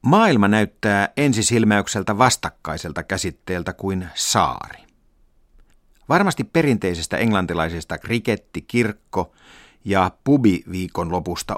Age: 50-69